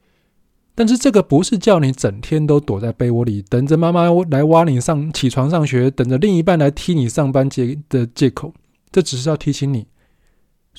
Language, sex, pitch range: Chinese, male, 125-175 Hz